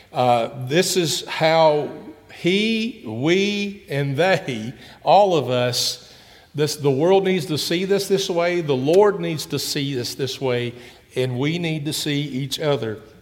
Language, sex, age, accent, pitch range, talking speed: English, male, 50-69, American, 125-155 Hz, 160 wpm